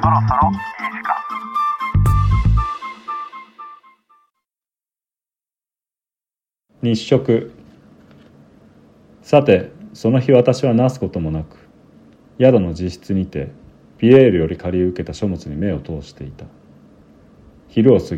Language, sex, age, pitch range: Japanese, male, 40-59, 80-120 Hz